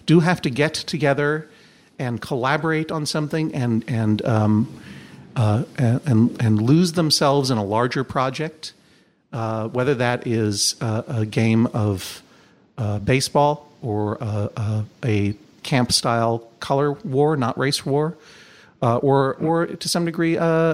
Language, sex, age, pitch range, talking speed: English, male, 50-69, 115-150 Hz, 140 wpm